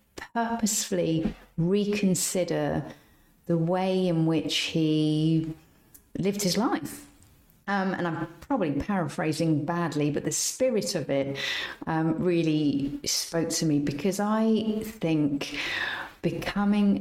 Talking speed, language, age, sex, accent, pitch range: 105 wpm, English, 40-59, female, British, 160-210 Hz